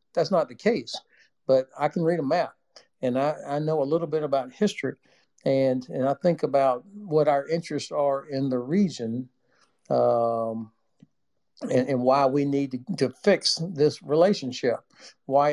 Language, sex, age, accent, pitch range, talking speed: English, male, 60-79, American, 130-160 Hz, 165 wpm